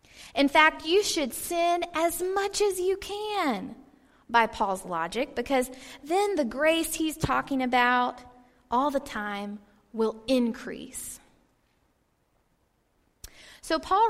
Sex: female